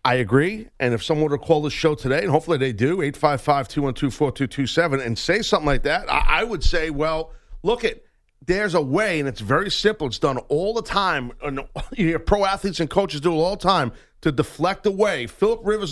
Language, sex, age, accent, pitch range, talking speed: English, male, 40-59, American, 155-225 Hz, 220 wpm